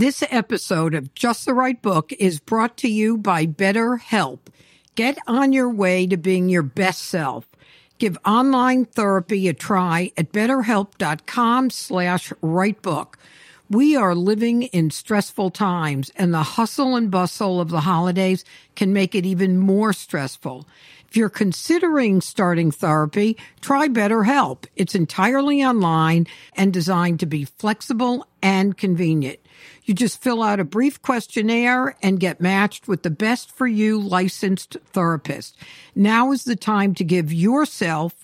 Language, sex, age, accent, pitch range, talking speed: English, female, 60-79, American, 175-225 Hz, 145 wpm